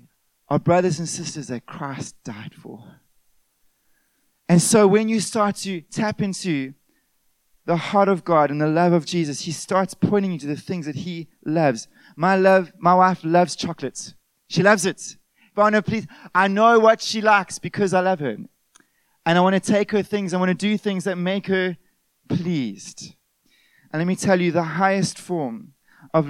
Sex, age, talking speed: male, 20-39, 185 wpm